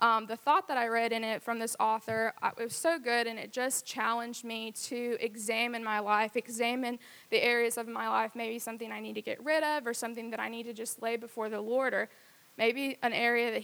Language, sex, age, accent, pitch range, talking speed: English, female, 20-39, American, 225-250 Hz, 240 wpm